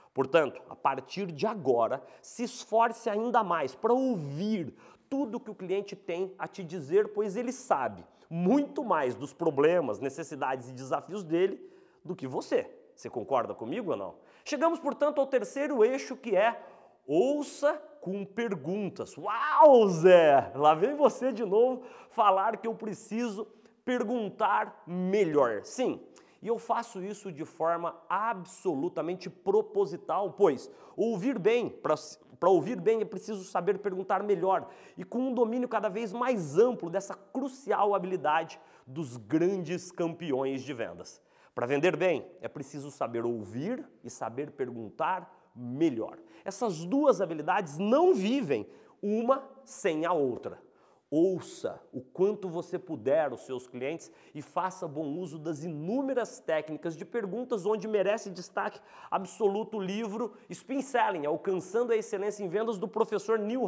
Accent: Brazilian